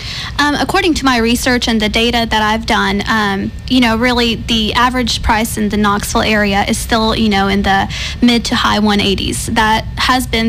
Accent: American